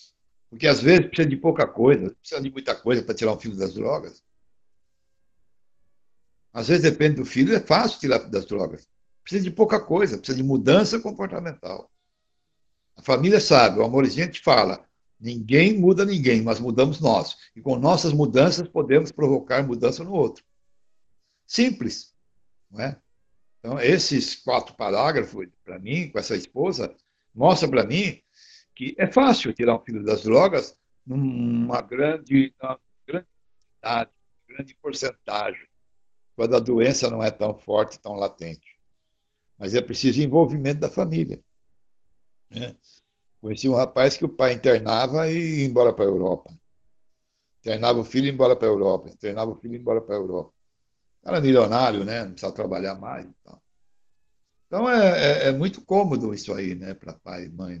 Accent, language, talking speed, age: Brazilian, Portuguese, 160 wpm, 60-79